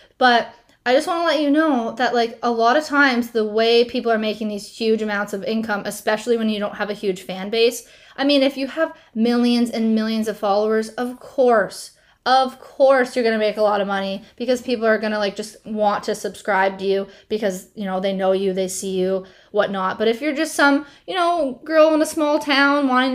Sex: female